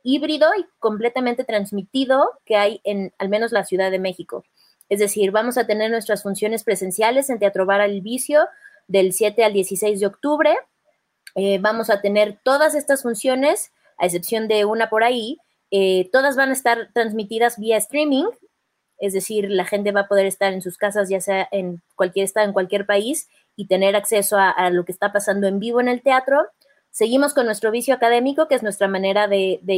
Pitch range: 195-255 Hz